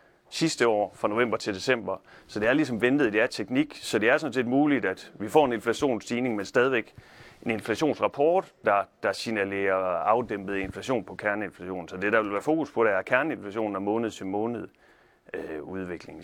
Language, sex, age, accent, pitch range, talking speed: Danish, male, 30-49, native, 100-125 Hz, 175 wpm